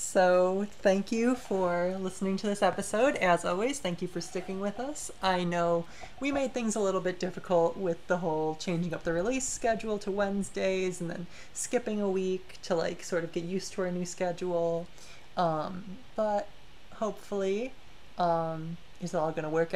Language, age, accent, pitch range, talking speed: English, 30-49, American, 170-205 Hz, 175 wpm